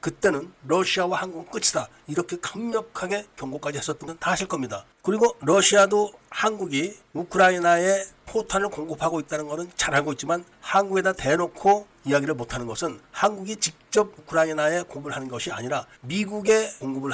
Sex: male